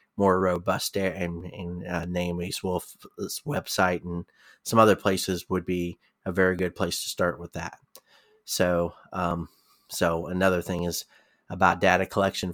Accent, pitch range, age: American, 85-95 Hz, 30-49